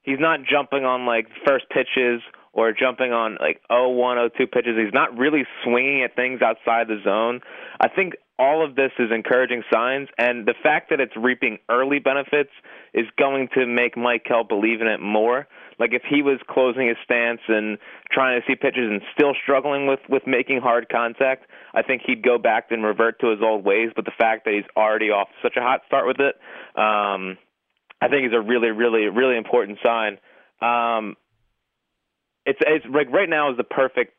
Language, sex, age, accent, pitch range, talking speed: English, male, 20-39, American, 115-135 Hz, 195 wpm